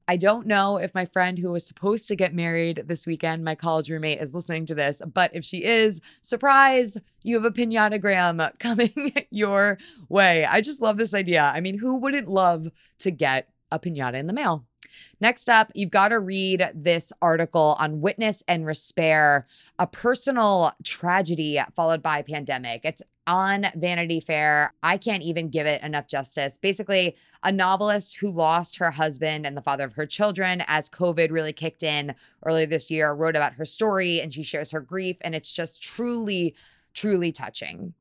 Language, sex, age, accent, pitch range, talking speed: English, female, 20-39, American, 155-195 Hz, 185 wpm